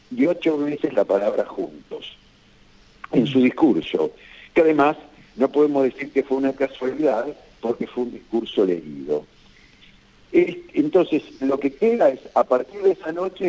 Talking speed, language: 145 wpm, Spanish